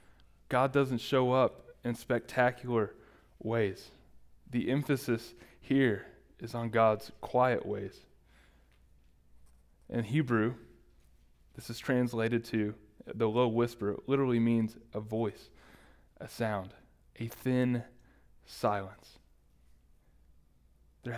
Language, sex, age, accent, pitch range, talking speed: English, male, 20-39, American, 100-120 Hz, 100 wpm